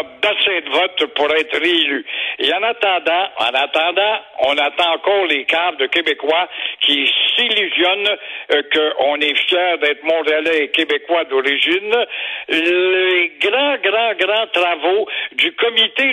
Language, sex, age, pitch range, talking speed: French, male, 60-79, 165-235 Hz, 135 wpm